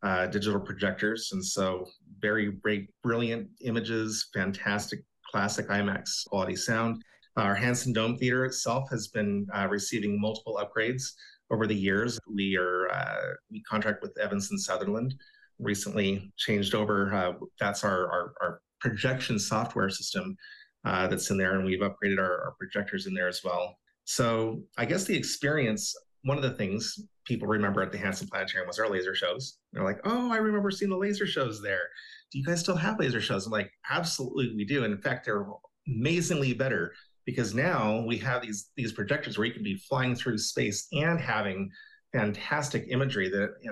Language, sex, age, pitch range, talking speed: English, male, 30-49, 100-130 Hz, 175 wpm